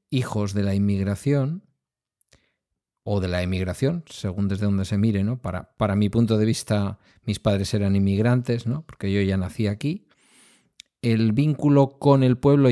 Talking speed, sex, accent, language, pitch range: 165 wpm, male, Spanish, Spanish, 95-125 Hz